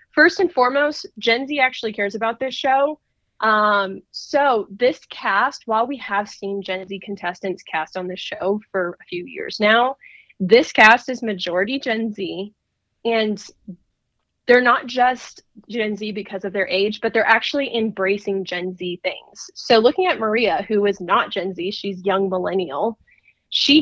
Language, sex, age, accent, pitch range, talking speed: English, female, 20-39, American, 195-255 Hz, 165 wpm